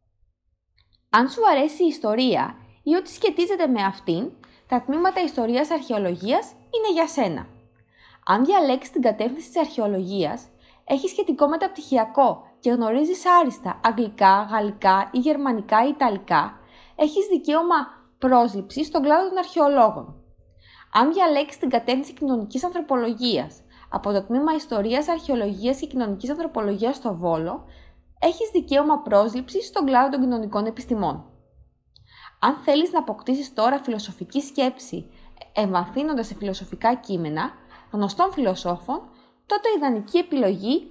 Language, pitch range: Greek, 205-300 Hz